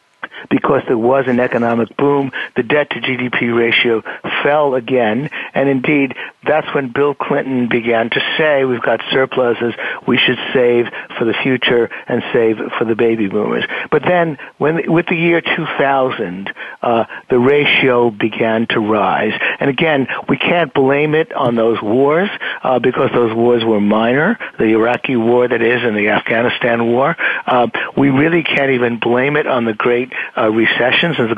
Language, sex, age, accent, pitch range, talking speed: English, male, 60-79, American, 120-140 Hz, 165 wpm